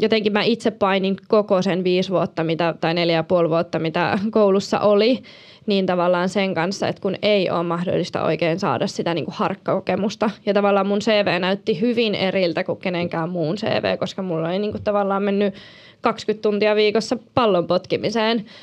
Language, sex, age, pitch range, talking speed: Finnish, female, 20-39, 185-215 Hz, 170 wpm